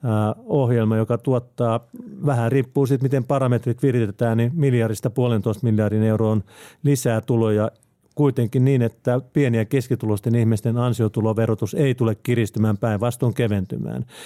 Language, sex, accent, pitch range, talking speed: Finnish, male, native, 115-135 Hz, 120 wpm